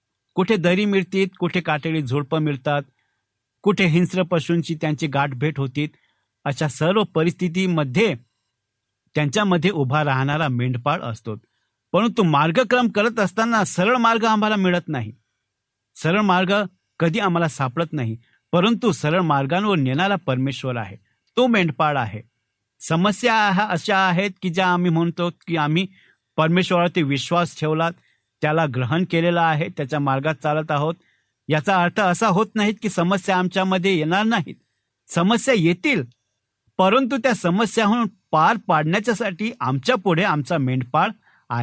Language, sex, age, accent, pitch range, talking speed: Marathi, male, 50-69, native, 140-195 Hz, 95 wpm